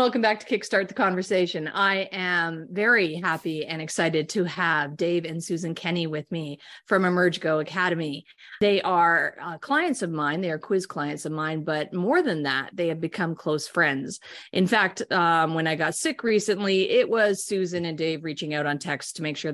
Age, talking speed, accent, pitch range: 30-49, 195 wpm, American, 155-195 Hz